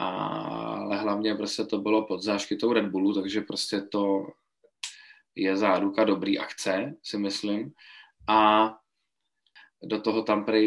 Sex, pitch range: male, 105-115 Hz